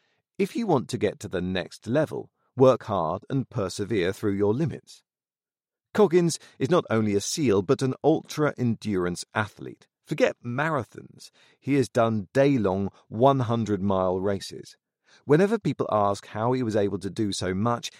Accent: British